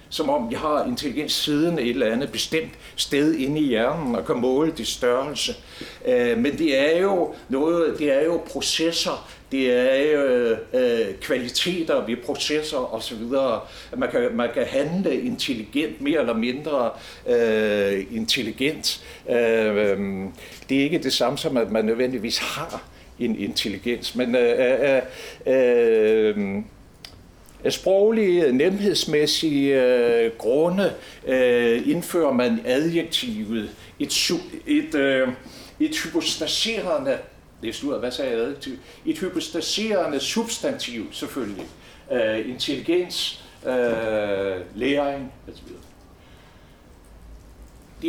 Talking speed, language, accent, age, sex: 105 wpm, English, Danish, 60-79, male